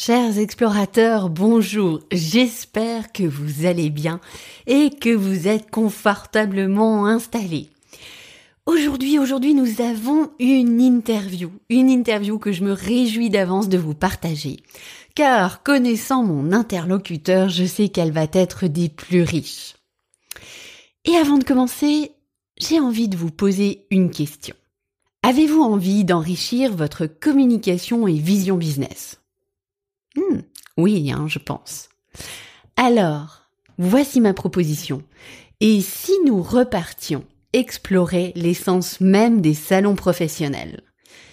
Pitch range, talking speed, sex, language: 165-235 Hz, 115 wpm, female, French